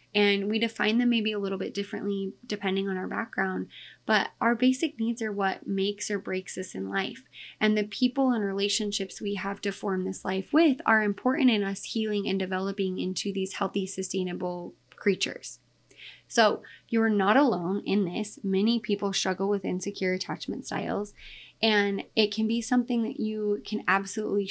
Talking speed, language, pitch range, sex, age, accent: 175 wpm, English, 195-245 Hz, female, 20-39, American